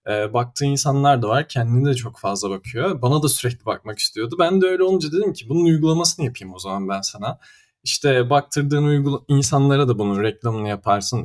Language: Turkish